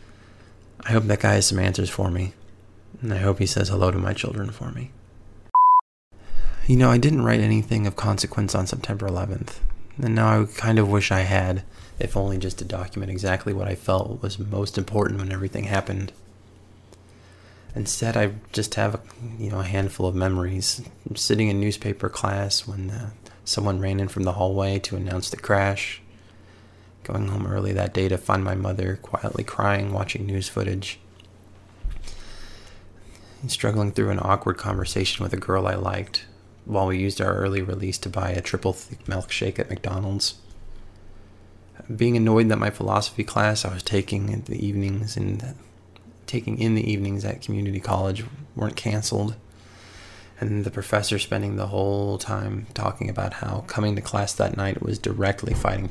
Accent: American